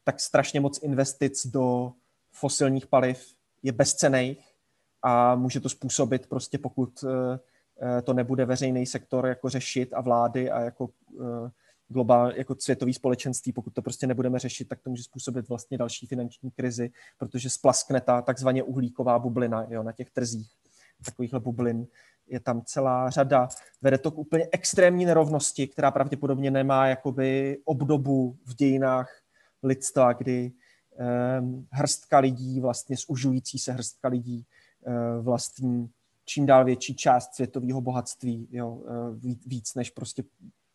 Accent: native